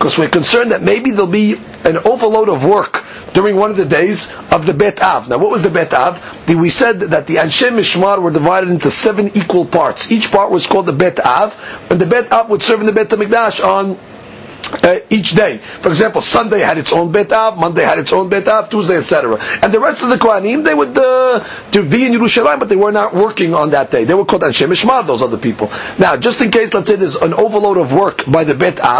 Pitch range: 175-220 Hz